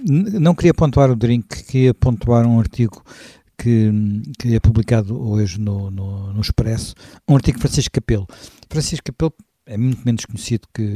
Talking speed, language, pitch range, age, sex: 165 wpm, Portuguese, 110-135 Hz, 60-79, male